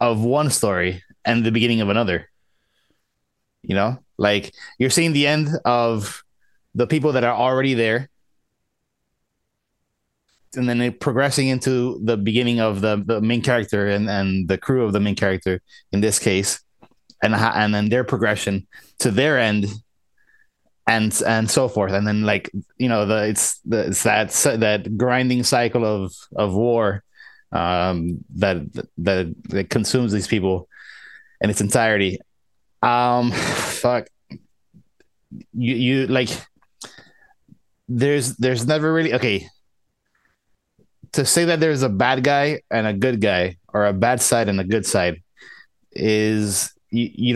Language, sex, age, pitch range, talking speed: English, male, 20-39, 105-125 Hz, 145 wpm